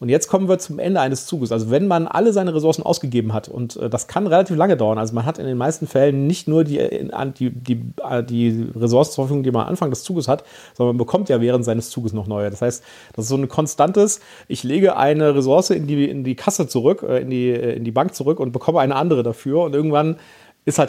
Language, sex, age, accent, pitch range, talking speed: German, male, 40-59, German, 120-160 Hz, 235 wpm